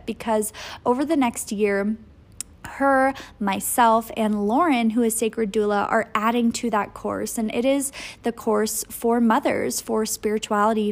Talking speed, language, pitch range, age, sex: 150 wpm, English, 205-230 Hz, 20-39, female